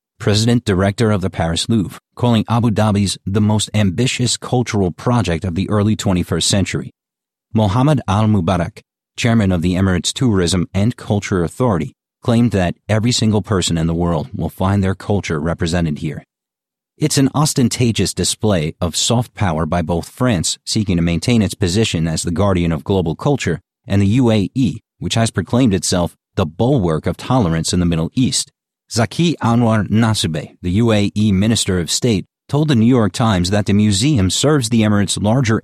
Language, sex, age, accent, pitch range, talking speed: English, male, 40-59, American, 90-115 Hz, 165 wpm